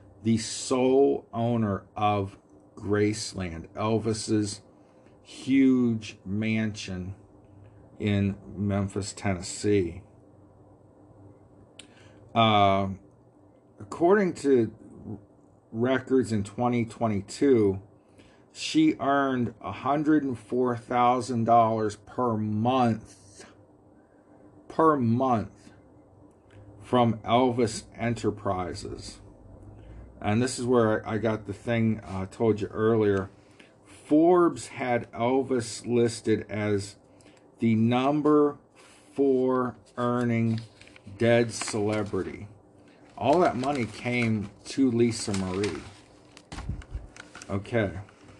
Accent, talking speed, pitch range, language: American, 75 wpm, 100-120 Hz, English